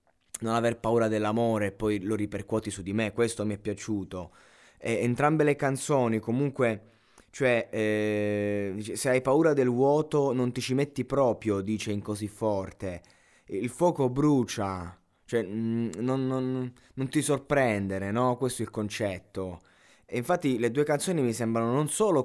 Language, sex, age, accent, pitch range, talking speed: Italian, male, 20-39, native, 105-140 Hz, 160 wpm